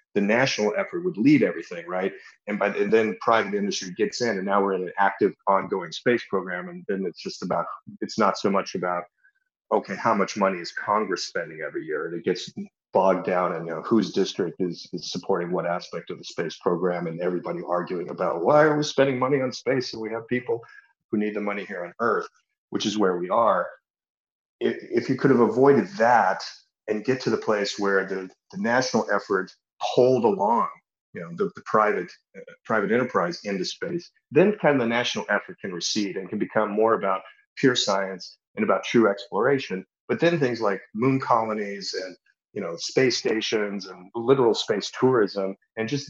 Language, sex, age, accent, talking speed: English, male, 40-59, American, 200 wpm